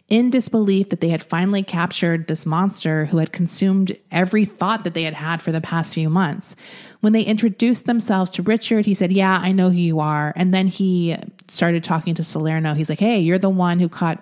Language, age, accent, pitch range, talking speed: English, 30-49, American, 160-195 Hz, 220 wpm